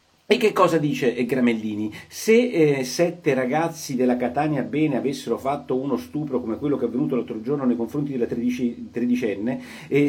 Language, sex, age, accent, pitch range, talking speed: Italian, male, 40-59, native, 120-165 Hz, 175 wpm